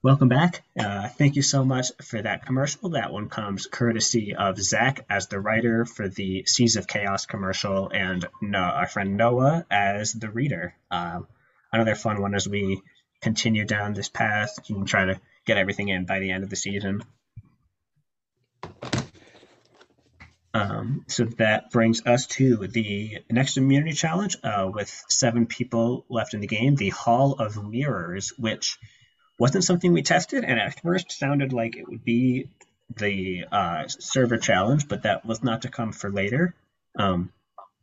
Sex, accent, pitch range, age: male, American, 100-130 Hz, 30-49